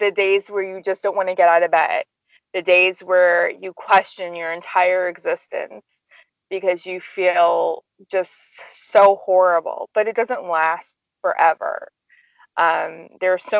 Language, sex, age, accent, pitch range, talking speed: English, female, 20-39, American, 185-250 Hz, 155 wpm